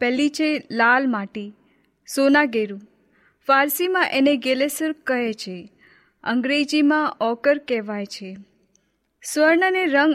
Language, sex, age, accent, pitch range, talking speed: Hindi, female, 20-39, native, 230-285 Hz, 105 wpm